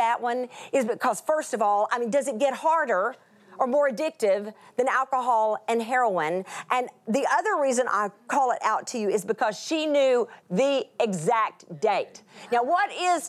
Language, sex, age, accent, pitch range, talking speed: English, female, 40-59, American, 220-320 Hz, 180 wpm